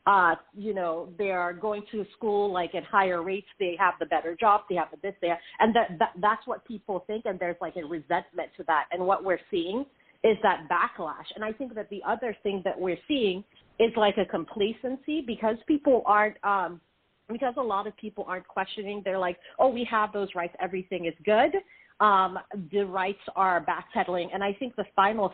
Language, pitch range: English, 180-215 Hz